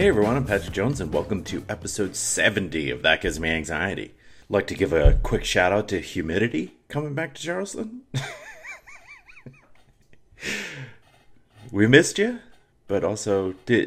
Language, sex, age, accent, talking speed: English, male, 30-49, American, 150 wpm